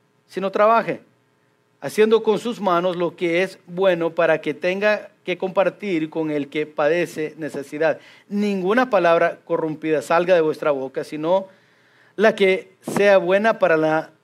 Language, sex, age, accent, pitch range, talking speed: English, male, 50-69, Mexican, 145-200 Hz, 145 wpm